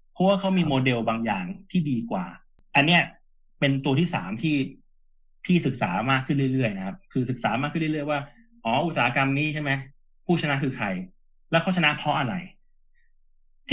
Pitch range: 130-180 Hz